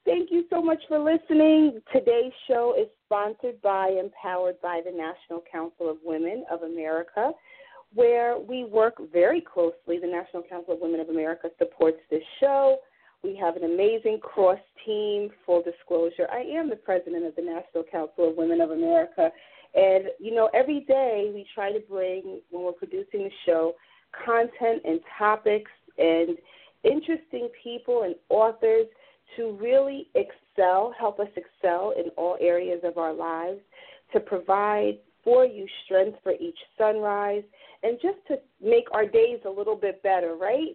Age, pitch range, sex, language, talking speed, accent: 40-59, 175-265 Hz, female, English, 160 wpm, American